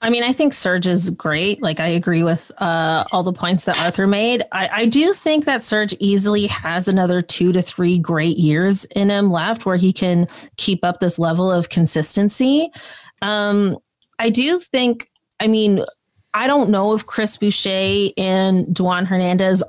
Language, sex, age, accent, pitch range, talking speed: English, female, 20-39, American, 180-215 Hz, 180 wpm